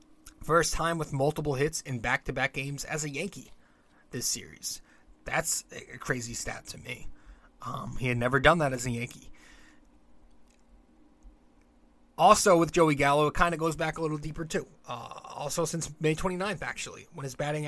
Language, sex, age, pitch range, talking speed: English, male, 20-39, 135-165 Hz, 170 wpm